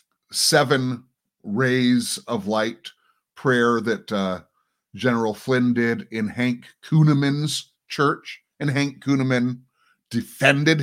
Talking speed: 100 wpm